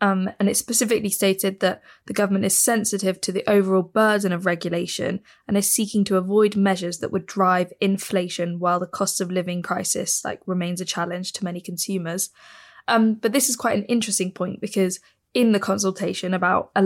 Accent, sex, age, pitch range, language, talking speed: British, female, 10-29, 180-205 Hz, English, 185 wpm